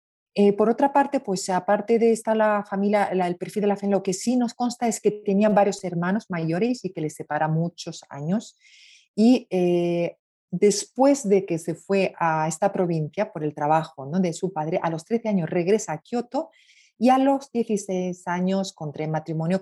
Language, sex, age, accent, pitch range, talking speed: Spanish, female, 40-59, Spanish, 155-200 Hz, 195 wpm